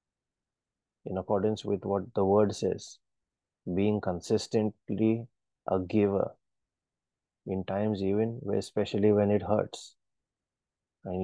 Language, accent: English, Indian